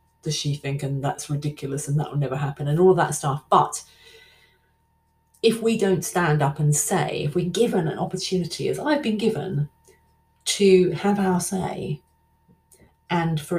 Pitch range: 145-175 Hz